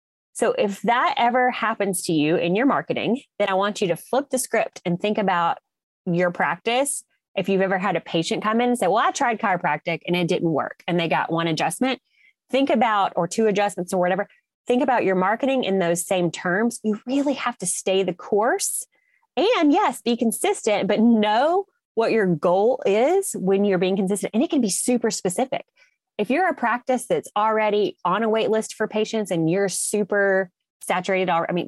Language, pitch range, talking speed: English, 175-235 Hz, 200 wpm